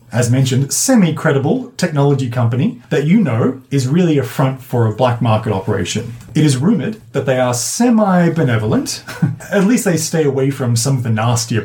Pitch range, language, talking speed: 125-165 Hz, English, 175 wpm